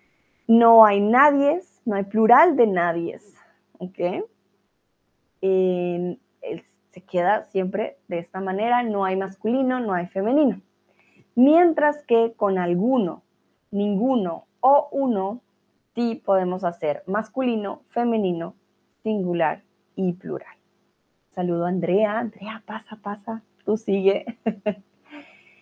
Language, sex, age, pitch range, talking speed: Spanish, female, 20-39, 190-245 Hz, 105 wpm